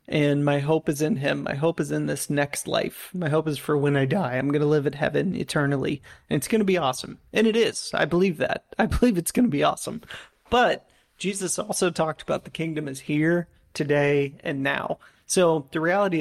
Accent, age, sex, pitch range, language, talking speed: American, 30-49, male, 145-175 Hz, English, 225 wpm